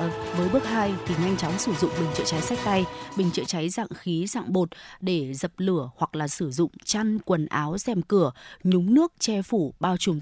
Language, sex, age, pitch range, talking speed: Vietnamese, female, 20-39, 165-220 Hz, 225 wpm